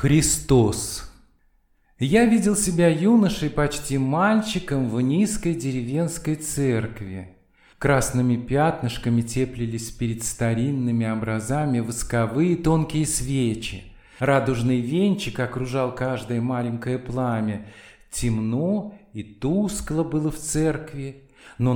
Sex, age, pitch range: male, 40-59, 115-155 Hz